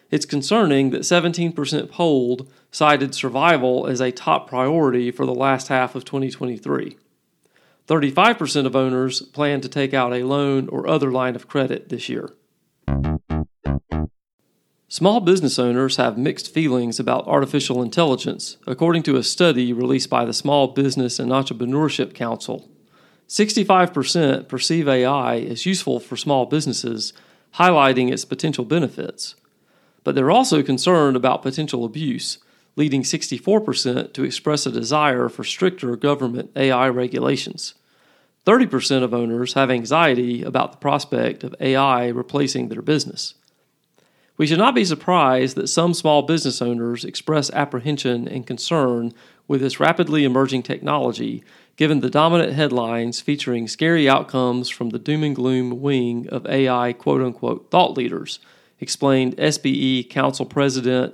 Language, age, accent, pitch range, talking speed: English, 40-59, American, 125-150 Hz, 135 wpm